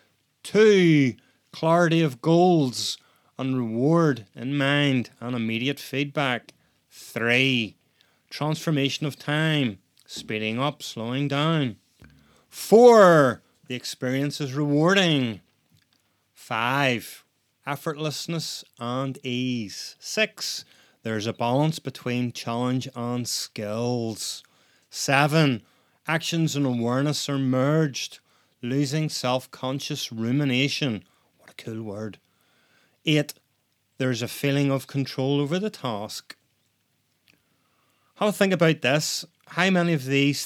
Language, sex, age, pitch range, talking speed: English, male, 30-49, 120-150 Hz, 100 wpm